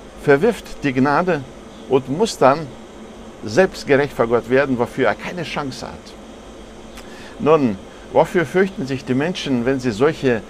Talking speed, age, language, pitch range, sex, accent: 135 wpm, 60-79, German, 115-145 Hz, male, German